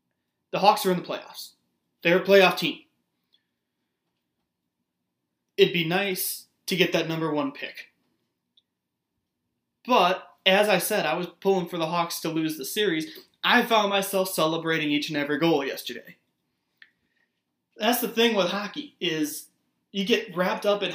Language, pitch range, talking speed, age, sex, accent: English, 150-195 Hz, 150 wpm, 20-39, male, American